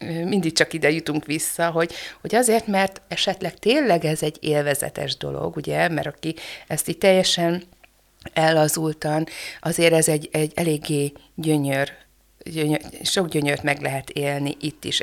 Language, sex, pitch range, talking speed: Hungarian, female, 155-165 Hz, 145 wpm